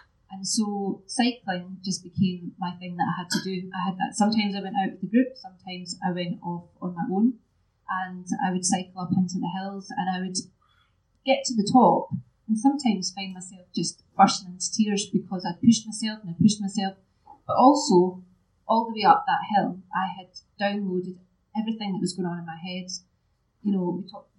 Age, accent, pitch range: 30-49, British, 180-210 Hz